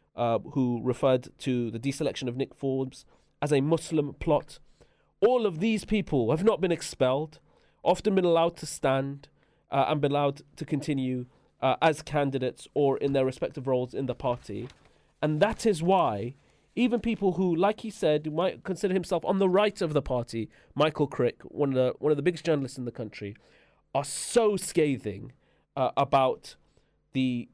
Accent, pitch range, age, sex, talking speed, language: British, 130-165 Hz, 30-49, male, 170 wpm, English